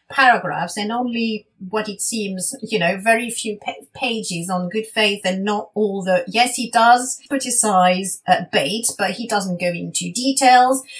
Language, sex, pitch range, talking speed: English, female, 185-240 Hz, 165 wpm